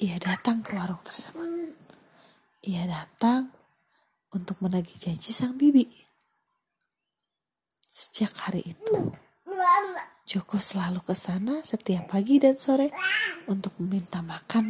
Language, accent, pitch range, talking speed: Indonesian, native, 190-275 Hz, 105 wpm